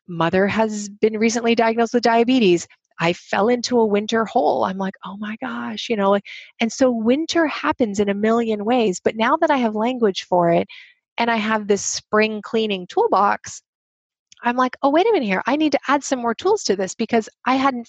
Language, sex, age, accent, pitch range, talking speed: English, female, 30-49, American, 205-260 Hz, 210 wpm